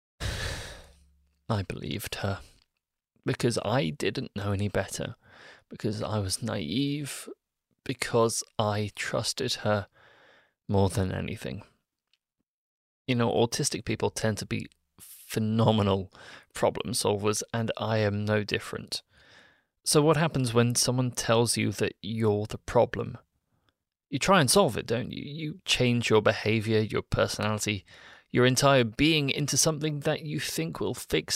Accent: British